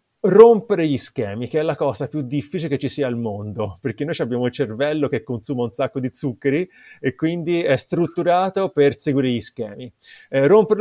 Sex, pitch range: male, 130-175 Hz